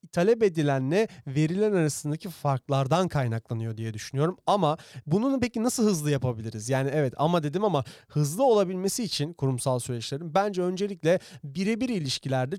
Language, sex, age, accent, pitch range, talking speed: Turkish, male, 40-59, native, 135-185 Hz, 135 wpm